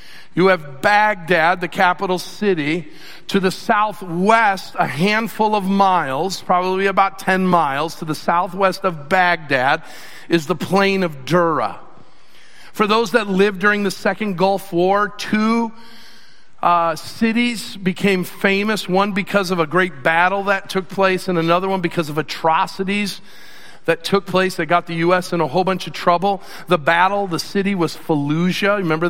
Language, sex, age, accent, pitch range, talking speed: English, male, 50-69, American, 170-200 Hz, 155 wpm